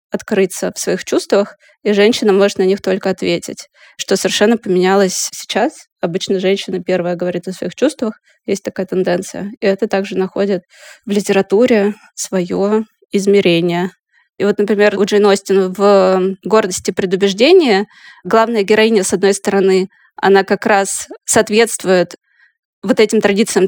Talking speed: 135 wpm